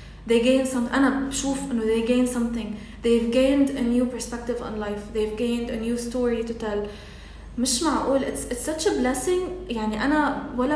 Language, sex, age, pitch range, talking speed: English, female, 20-39, 225-270 Hz, 185 wpm